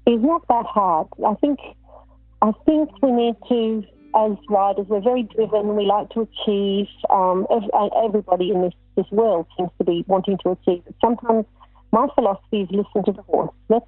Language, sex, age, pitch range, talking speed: English, female, 40-59, 185-230 Hz, 180 wpm